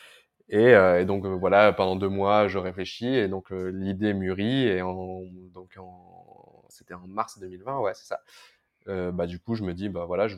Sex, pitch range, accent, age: male, 95-105 Hz, French, 20-39